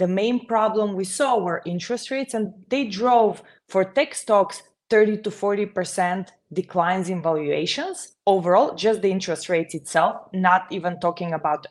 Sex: female